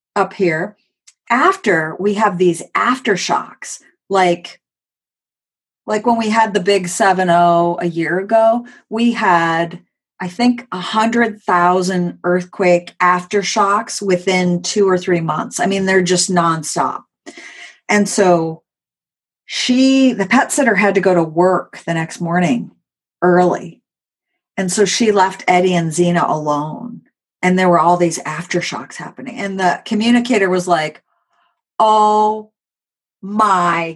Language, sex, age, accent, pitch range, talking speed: English, female, 40-59, American, 175-225 Hz, 125 wpm